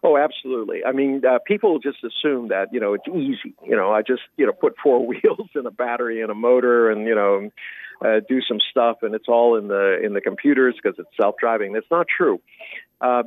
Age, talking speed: 50-69, 225 wpm